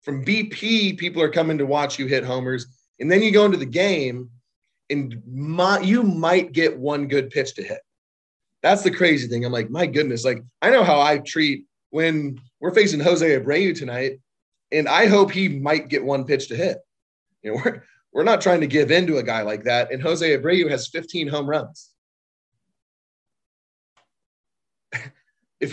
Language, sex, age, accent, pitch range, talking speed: English, male, 30-49, American, 125-175 Hz, 180 wpm